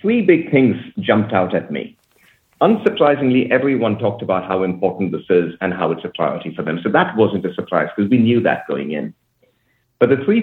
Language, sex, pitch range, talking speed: English, male, 95-125 Hz, 205 wpm